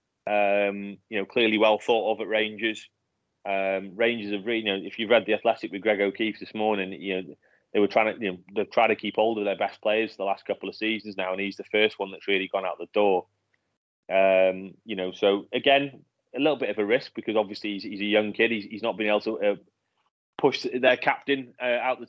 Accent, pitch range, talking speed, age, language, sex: British, 100-120 Hz, 245 wpm, 30-49, English, male